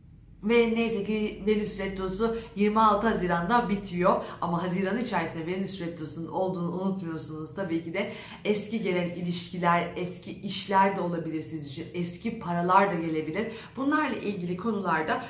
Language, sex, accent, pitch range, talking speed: Turkish, female, native, 175-205 Hz, 135 wpm